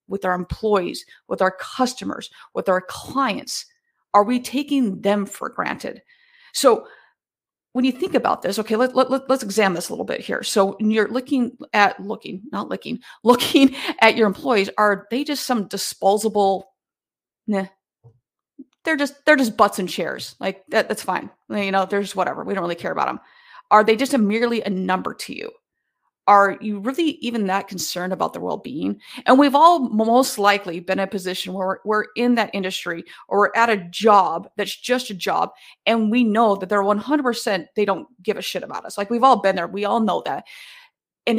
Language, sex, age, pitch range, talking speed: English, female, 30-49, 195-260 Hz, 200 wpm